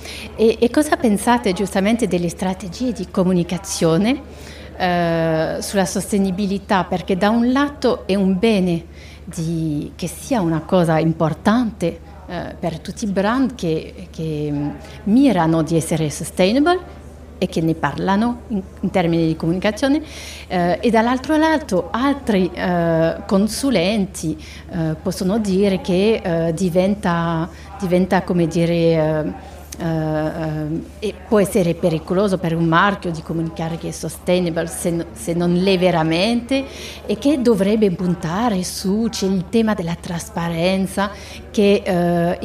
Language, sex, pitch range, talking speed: French, female, 170-210 Hz, 130 wpm